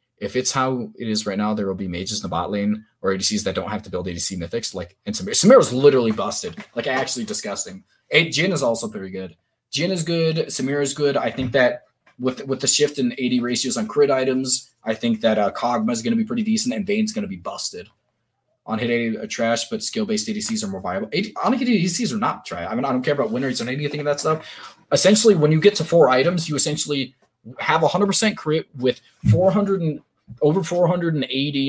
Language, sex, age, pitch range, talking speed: English, male, 20-39, 115-160 Hz, 240 wpm